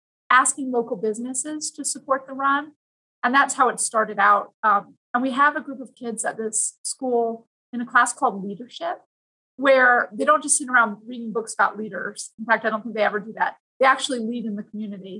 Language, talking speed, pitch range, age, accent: English, 215 wpm, 215-255 Hz, 30-49, American